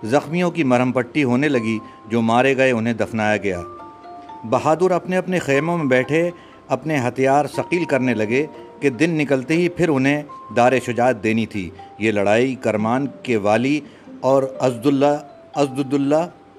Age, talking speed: 50-69, 145 wpm